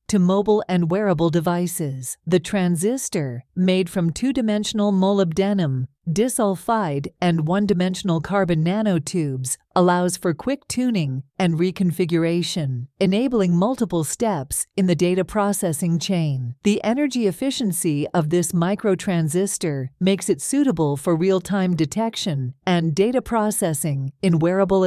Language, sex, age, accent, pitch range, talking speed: English, female, 50-69, American, 165-200 Hz, 115 wpm